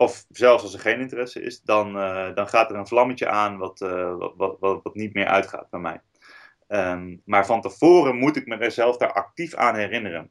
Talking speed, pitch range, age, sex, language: 210 wpm, 100-125 Hz, 30-49, male, Dutch